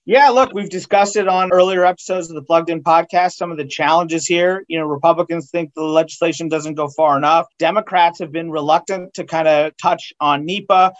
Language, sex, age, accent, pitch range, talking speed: English, male, 40-59, American, 160-185 Hz, 205 wpm